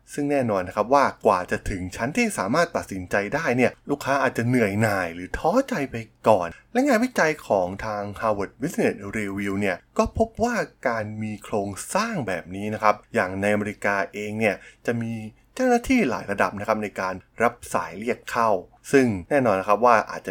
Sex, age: male, 20-39